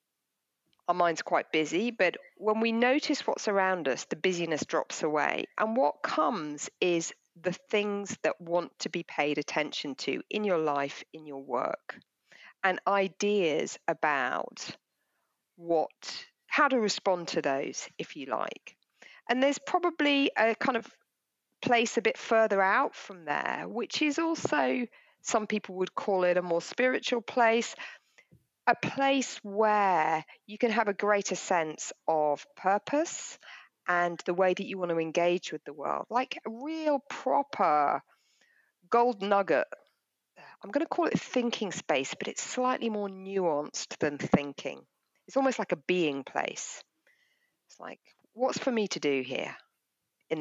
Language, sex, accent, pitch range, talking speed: English, female, British, 175-255 Hz, 150 wpm